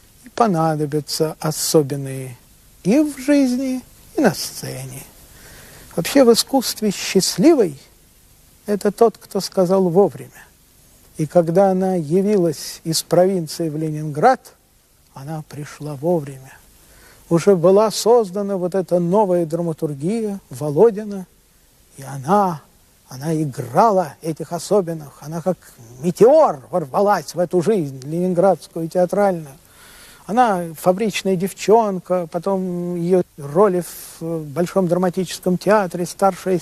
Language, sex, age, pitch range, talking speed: Russian, male, 50-69, 165-215 Hz, 100 wpm